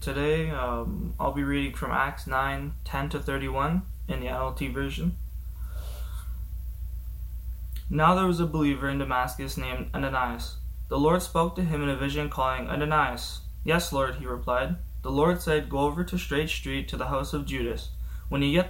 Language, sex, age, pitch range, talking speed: English, male, 20-39, 125-150 Hz, 170 wpm